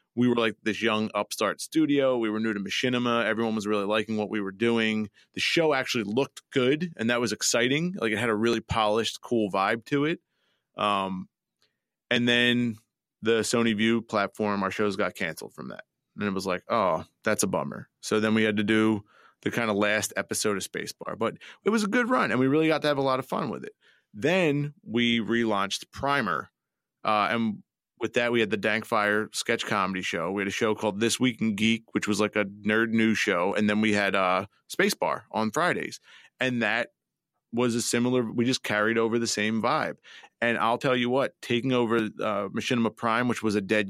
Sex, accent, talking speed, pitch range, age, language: male, American, 215 wpm, 105-120 Hz, 30-49, English